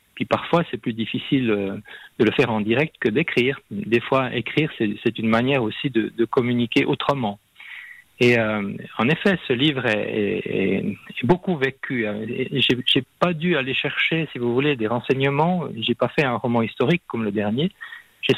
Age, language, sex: 40-59, French, male